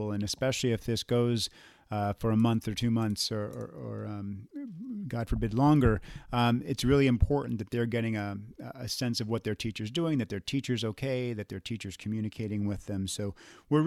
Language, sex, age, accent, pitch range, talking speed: English, male, 40-59, American, 110-130 Hz, 200 wpm